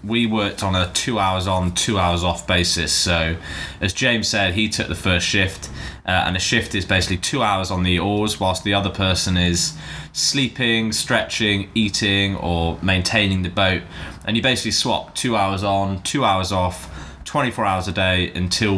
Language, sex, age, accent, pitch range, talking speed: English, male, 10-29, British, 90-110 Hz, 185 wpm